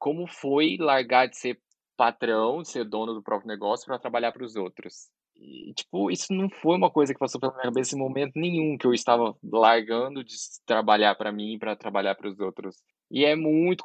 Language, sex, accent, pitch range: Portuguese, male, Brazilian, 125-175 Hz